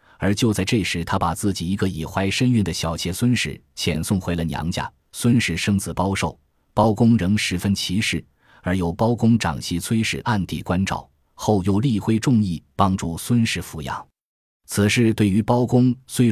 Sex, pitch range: male, 85-115 Hz